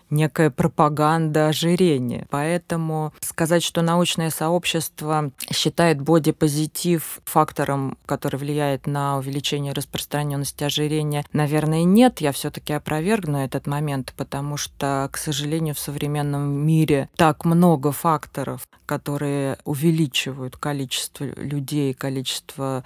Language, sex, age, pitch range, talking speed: Russian, female, 20-39, 140-160 Hz, 105 wpm